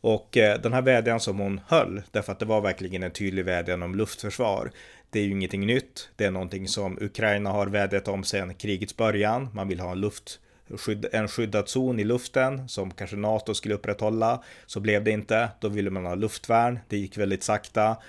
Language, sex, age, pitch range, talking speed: Swedish, male, 30-49, 95-115 Hz, 200 wpm